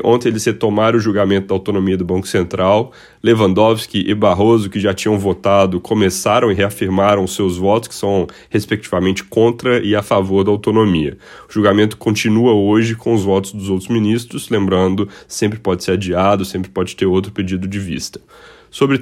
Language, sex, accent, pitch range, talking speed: Portuguese, male, Brazilian, 95-110 Hz, 175 wpm